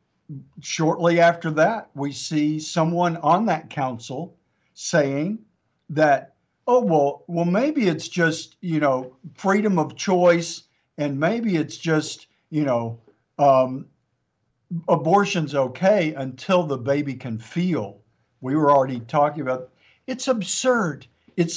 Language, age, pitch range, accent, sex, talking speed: English, 50-69, 140-180 Hz, American, male, 120 wpm